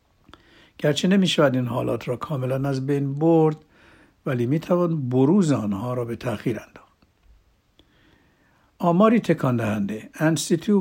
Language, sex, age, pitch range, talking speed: Persian, male, 60-79, 115-150 Hz, 130 wpm